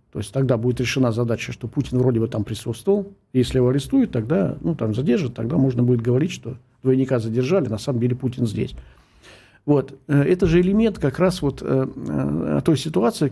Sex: male